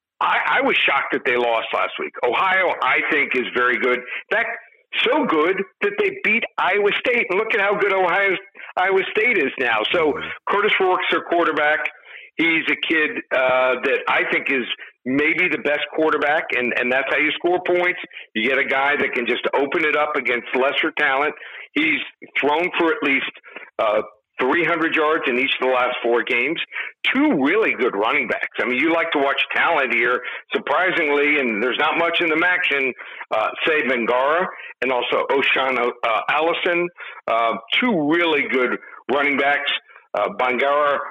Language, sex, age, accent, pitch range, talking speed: English, male, 50-69, American, 130-180 Hz, 180 wpm